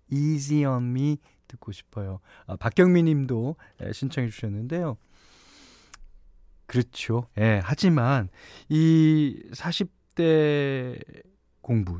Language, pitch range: Korean, 110-155 Hz